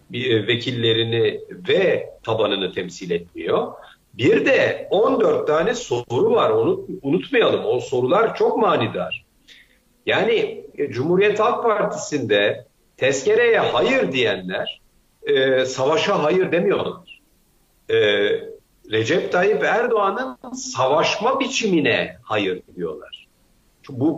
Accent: native